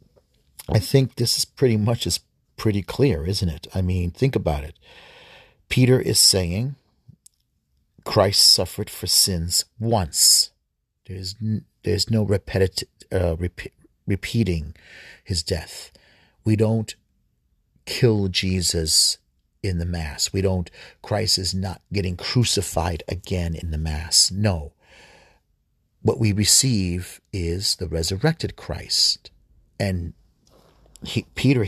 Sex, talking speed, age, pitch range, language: male, 115 wpm, 40-59, 90-115 Hz, English